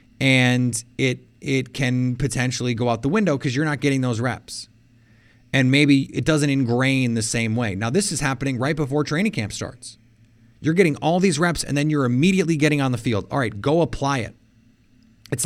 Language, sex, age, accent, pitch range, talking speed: English, male, 30-49, American, 115-145 Hz, 200 wpm